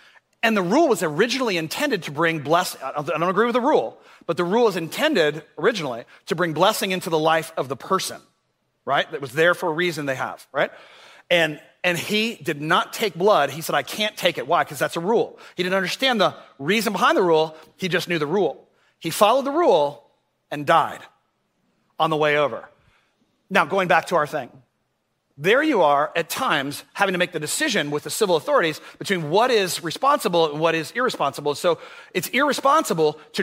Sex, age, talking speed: male, 40-59, 205 wpm